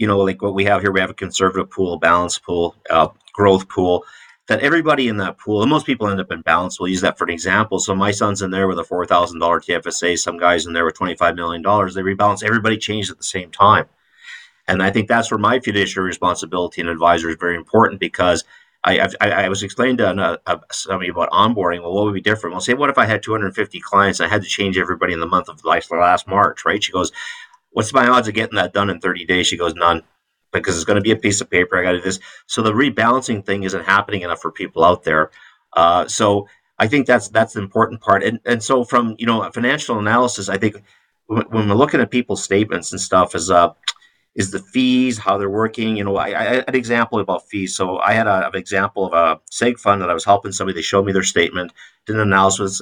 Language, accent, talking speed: English, American, 250 wpm